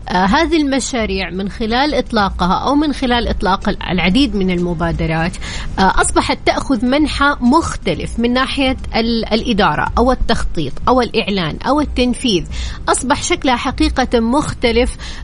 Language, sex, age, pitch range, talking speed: Arabic, female, 30-49, 210-270 Hz, 120 wpm